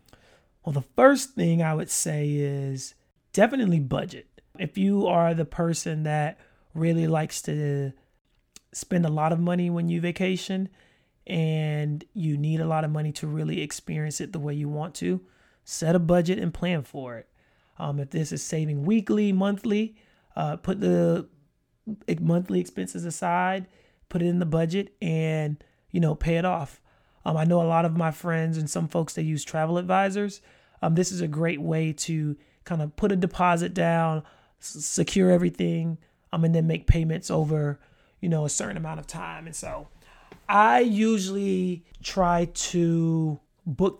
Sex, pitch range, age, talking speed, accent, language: male, 155-180 Hz, 30-49, 170 wpm, American, English